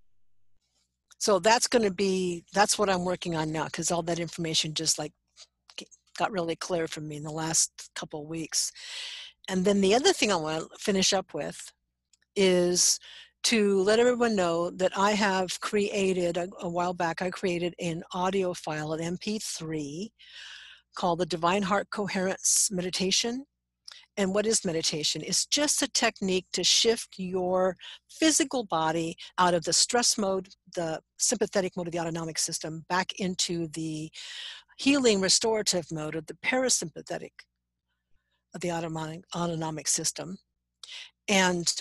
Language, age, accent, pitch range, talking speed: English, 60-79, American, 160-200 Hz, 150 wpm